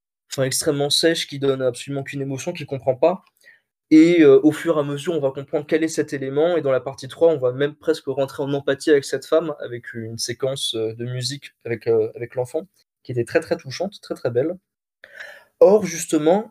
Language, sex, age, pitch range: French, male, 20-39, 135-165 Hz